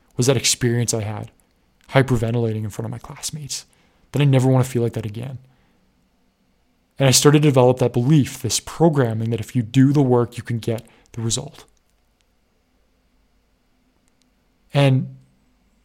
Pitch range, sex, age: 115-130 Hz, male, 20-39